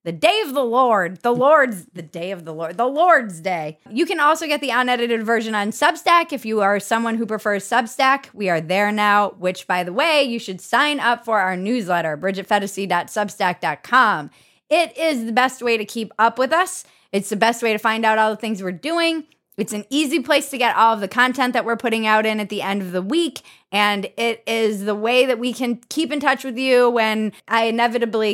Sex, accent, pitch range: female, American, 185-245 Hz